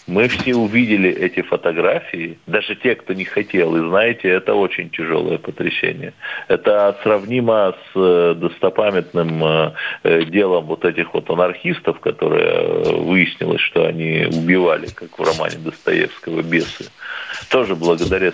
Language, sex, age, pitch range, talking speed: Russian, male, 40-59, 85-135 Hz, 120 wpm